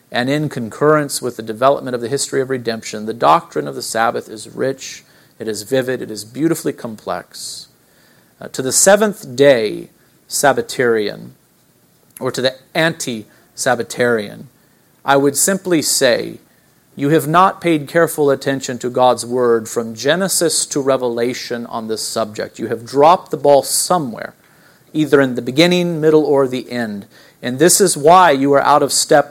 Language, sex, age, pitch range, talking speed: English, male, 40-59, 120-150 Hz, 160 wpm